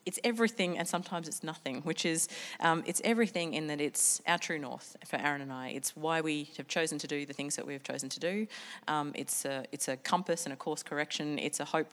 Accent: Australian